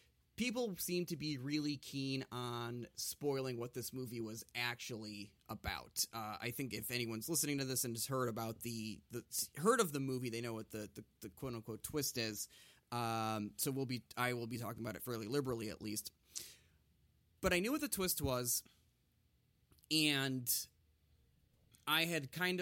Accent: American